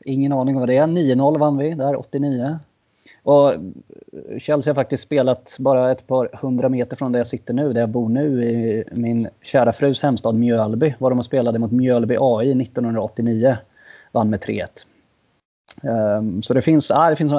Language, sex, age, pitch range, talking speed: Swedish, male, 20-39, 115-140 Hz, 175 wpm